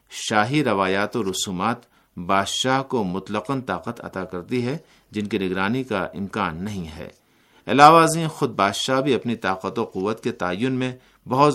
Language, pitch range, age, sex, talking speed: Urdu, 95-130 Hz, 50-69, male, 160 wpm